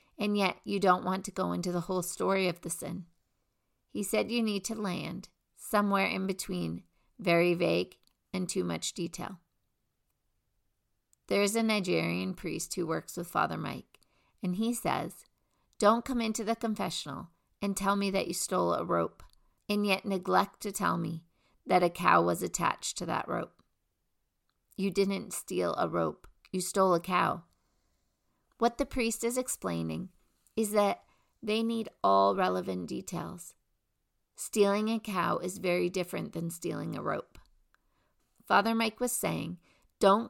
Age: 40-59